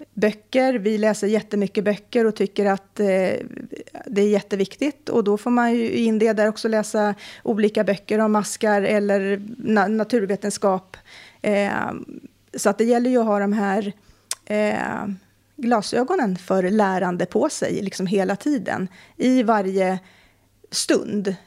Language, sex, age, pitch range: Swedish, female, 30-49, 195-225 Hz